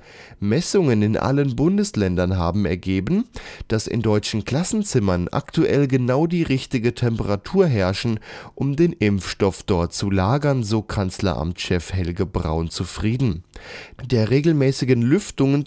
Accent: German